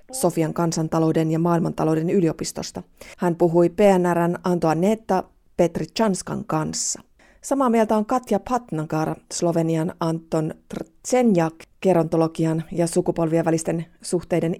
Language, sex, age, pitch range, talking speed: Finnish, female, 30-49, 170-210 Hz, 105 wpm